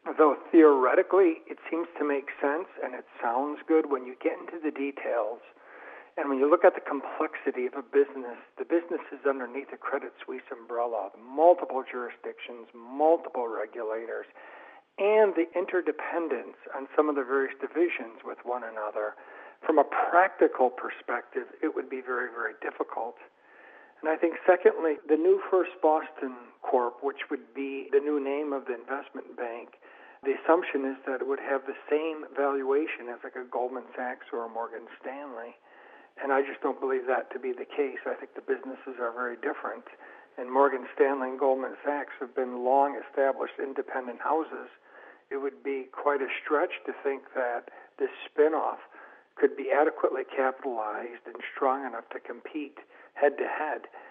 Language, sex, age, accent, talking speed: English, male, 50-69, American, 160 wpm